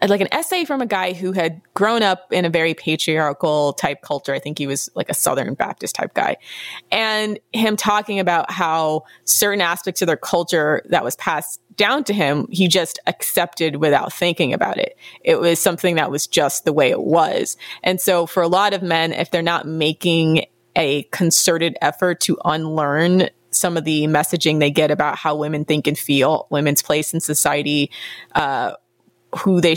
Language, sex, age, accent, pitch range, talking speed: English, female, 20-39, American, 155-190 Hz, 190 wpm